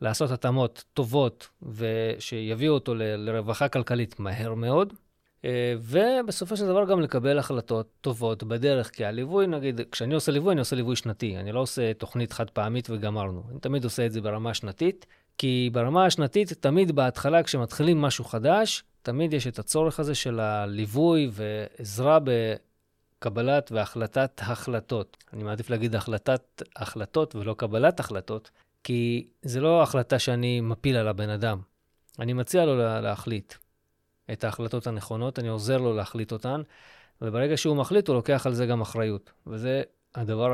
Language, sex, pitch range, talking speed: Hebrew, male, 110-140 Hz, 150 wpm